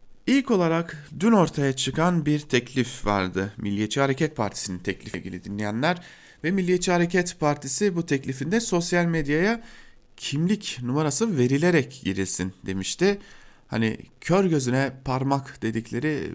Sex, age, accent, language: male, 40-59, Turkish, German